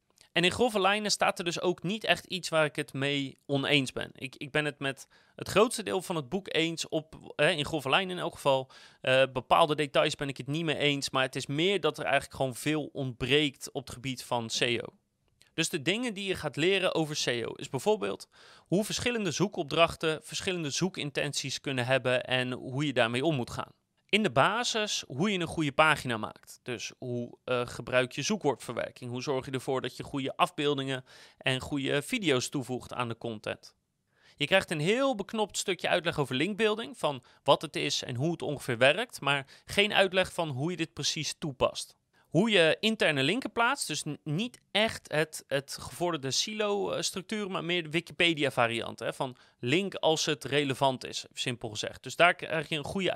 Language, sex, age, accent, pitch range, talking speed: Dutch, male, 30-49, Dutch, 135-180 Hz, 195 wpm